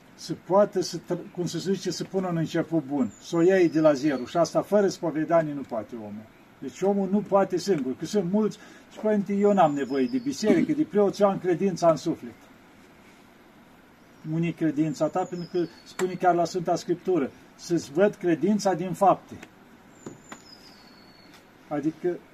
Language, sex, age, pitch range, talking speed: Romanian, male, 50-69, 160-200 Hz, 165 wpm